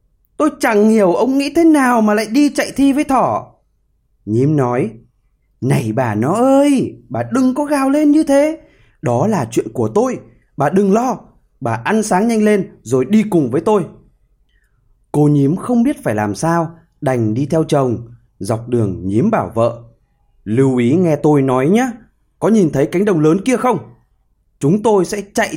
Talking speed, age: 185 wpm, 20-39